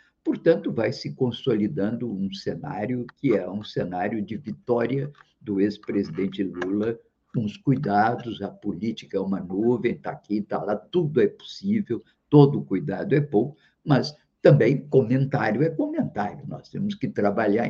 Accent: Brazilian